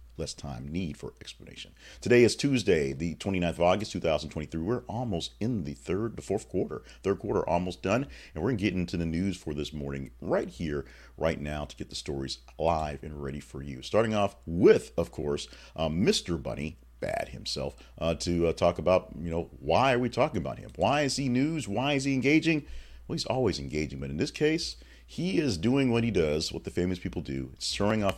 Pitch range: 75-110 Hz